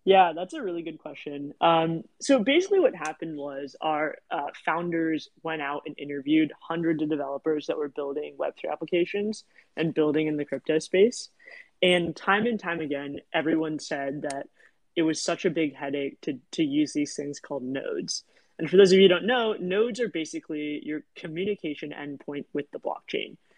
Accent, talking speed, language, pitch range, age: American, 180 wpm, English, 150-185 Hz, 20-39